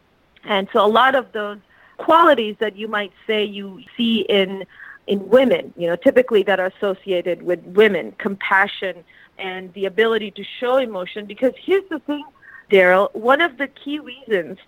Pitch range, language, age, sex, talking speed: 195-245 Hz, English, 40-59, female, 170 wpm